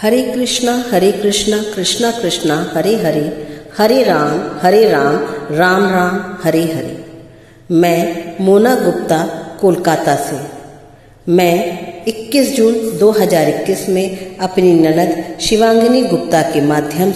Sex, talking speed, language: female, 110 wpm, Hindi